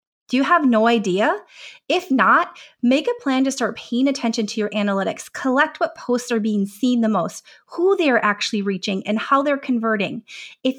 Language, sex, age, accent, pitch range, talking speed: English, female, 30-49, American, 215-285 Hz, 195 wpm